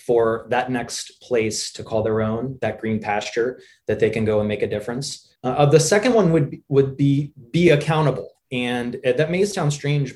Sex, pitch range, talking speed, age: male, 120-155 Hz, 195 wpm, 20-39